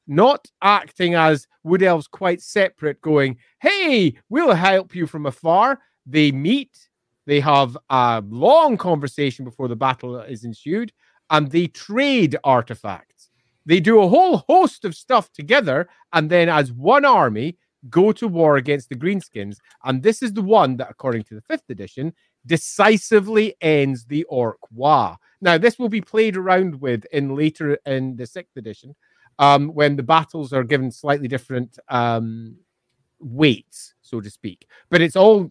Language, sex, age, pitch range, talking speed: English, male, 30-49, 125-175 Hz, 160 wpm